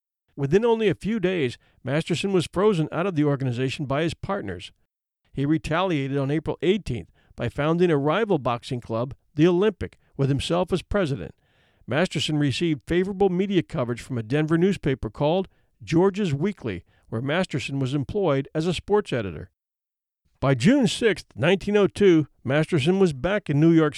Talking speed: 155 wpm